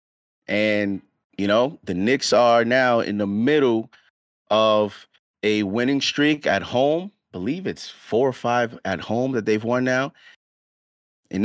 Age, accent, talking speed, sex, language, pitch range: 30-49, American, 150 wpm, male, English, 110-135 Hz